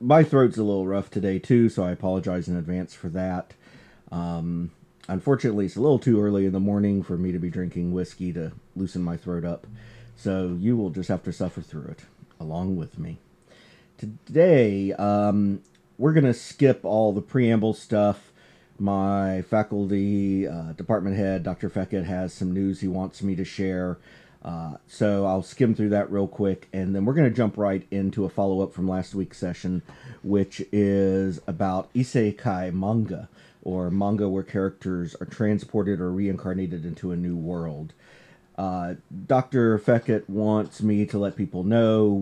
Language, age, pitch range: English, 40-59, 95-110 Hz